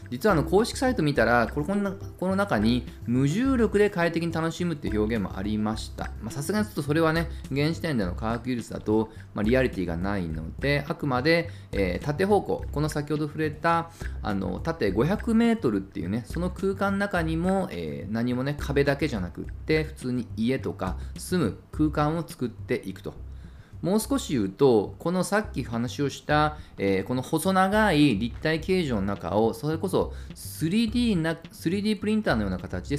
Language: Japanese